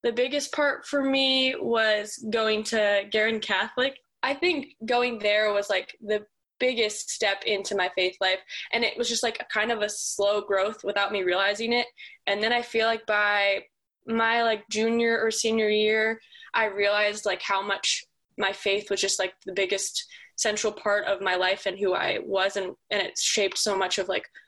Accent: American